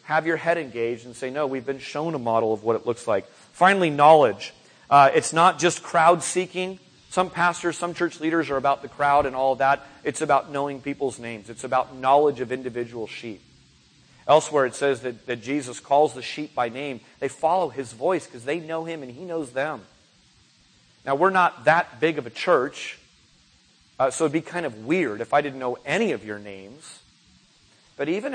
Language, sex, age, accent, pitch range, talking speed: English, male, 30-49, American, 125-165 Hz, 205 wpm